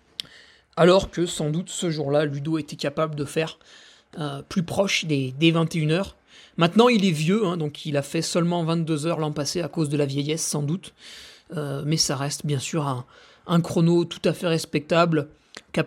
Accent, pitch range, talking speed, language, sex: French, 160-205 Hz, 195 wpm, French, male